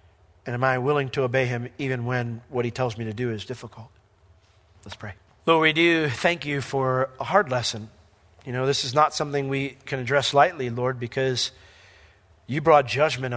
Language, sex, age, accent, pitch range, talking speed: English, male, 40-59, American, 120-150 Hz, 195 wpm